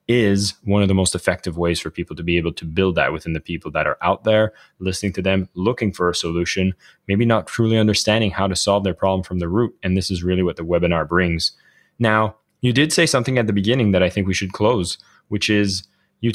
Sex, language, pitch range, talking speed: male, English, 95-120 Hz, 240 wpm